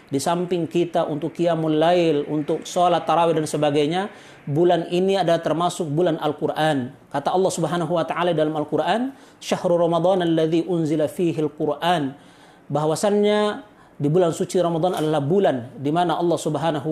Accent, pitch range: native, 150-180 Hz